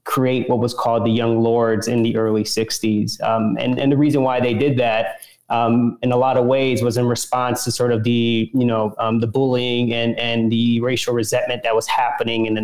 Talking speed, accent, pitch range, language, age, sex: 230 wpm, American, 115-130 Hz, English, 20-39, male